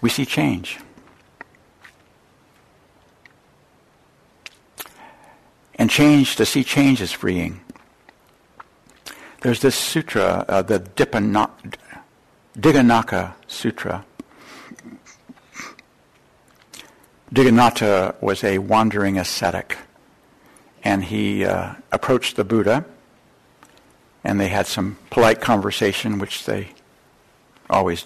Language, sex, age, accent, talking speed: English, male, 60-79, American, 80 wpm